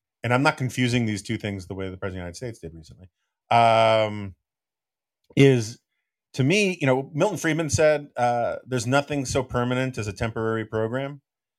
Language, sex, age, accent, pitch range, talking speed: English, male, 40-59, American, 105-135 Hz, 180 wpm